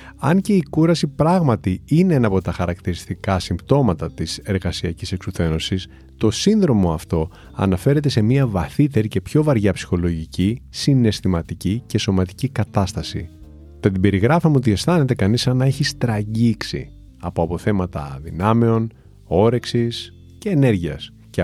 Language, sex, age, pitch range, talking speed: Greek, male, 30-49, 90-130 Hz, 125 wpm